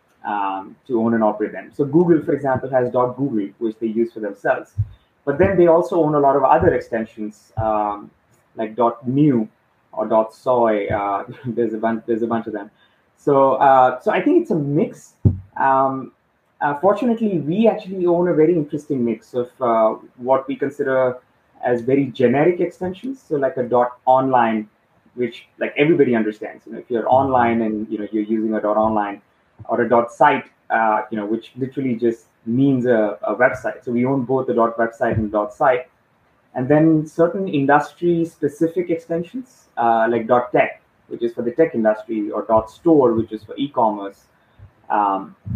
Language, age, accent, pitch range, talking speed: English, 20-39, Indian, 110-145 Hz, 175 wpm